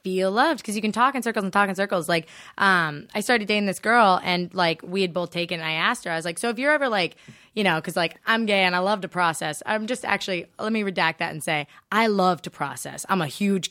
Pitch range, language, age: 170-225 Hz, English, 20-39